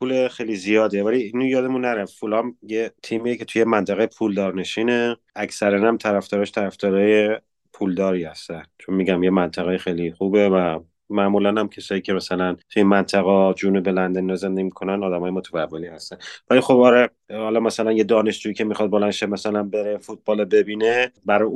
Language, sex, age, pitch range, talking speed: Persian, male, 30-49, 95-110 Hz, 155 wpm